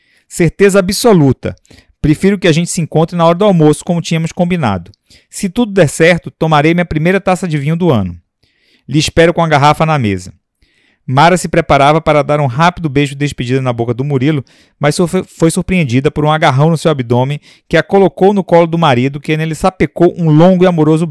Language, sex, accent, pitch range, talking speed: Portuguese, male, Brazilian, 130-175 Hz, 200 wpm